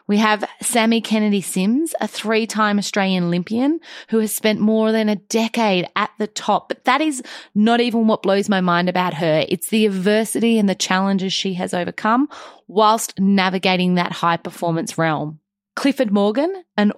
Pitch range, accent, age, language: 185-235 Hz, Australian, 30-49, English